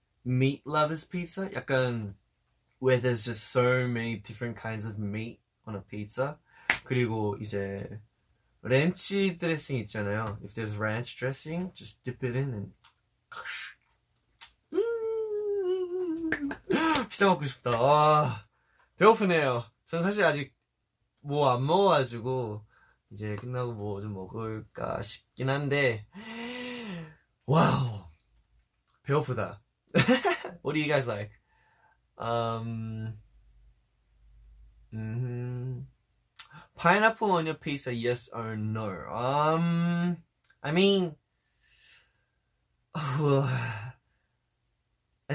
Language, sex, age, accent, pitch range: Korean, male, 20-39, native, 110-160 Hz